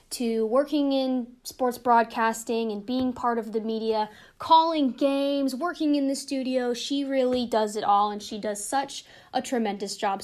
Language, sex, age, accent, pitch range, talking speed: English, female, 10-29, American, 225-290 Hz, 170 wpm